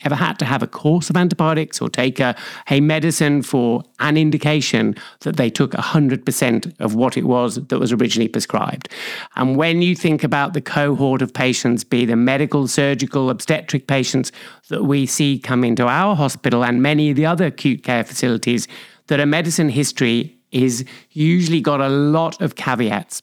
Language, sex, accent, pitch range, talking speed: English, male, British, 130-165 Hz, 180 wpm